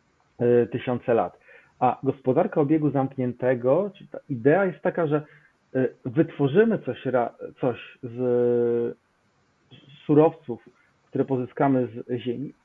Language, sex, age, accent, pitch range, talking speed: Polish, male, 40-59, native, 135-175 Hz, 100 wpm